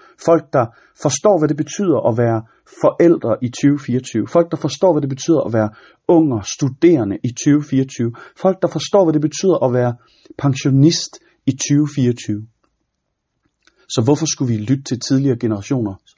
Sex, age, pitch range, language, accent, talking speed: male, 30-49, 120-155 Hz, Danish, native, 155 wpm